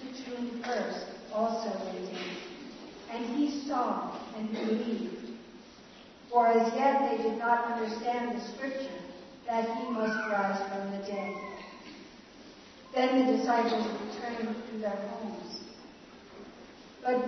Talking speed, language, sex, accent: 110 wpm, English, female, American